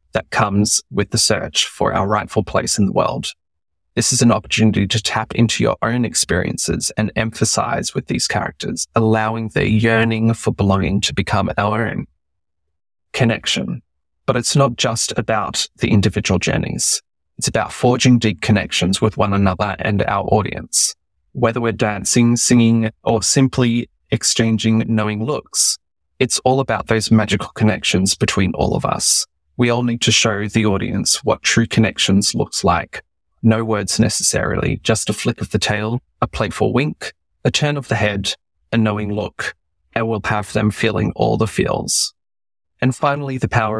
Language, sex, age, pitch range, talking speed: English, male, 20-39, 100-115 Hz, 165 wpm